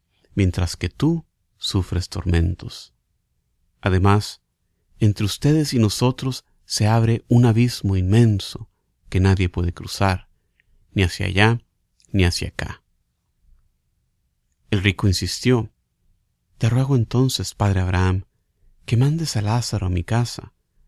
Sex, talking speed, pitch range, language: male, 115 wpm, 90-115 Hz, Spanish